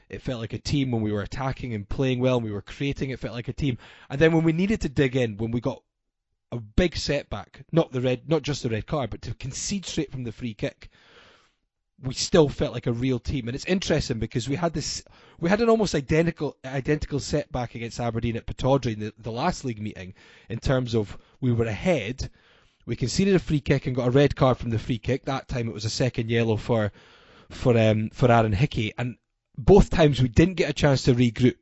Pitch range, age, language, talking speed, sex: 110-145 Hz, 20-39, English, 235 wpm, male